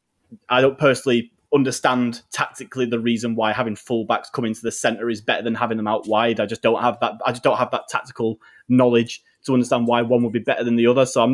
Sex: male